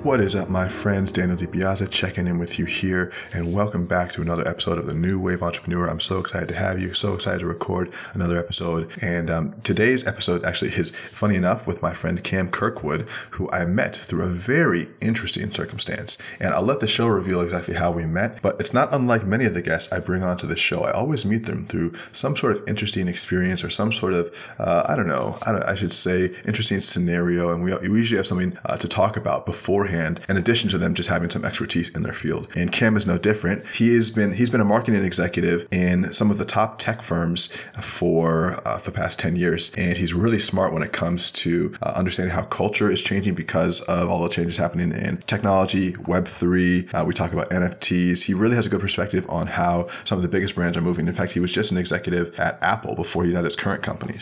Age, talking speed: 20-39, 230 wpm